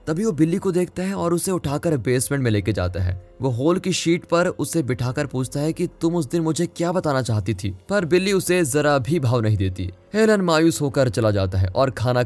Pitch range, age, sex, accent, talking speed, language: 110-170 Hz, 20-39, male, native, 230 wpm, Hindi